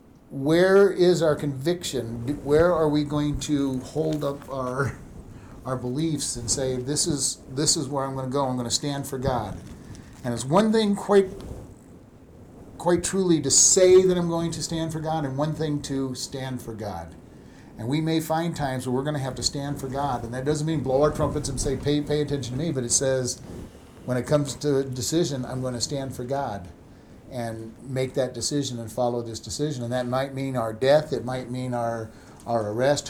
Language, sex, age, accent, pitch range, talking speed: English, male, 50-69, American, 125-150 Hz, 210 wpm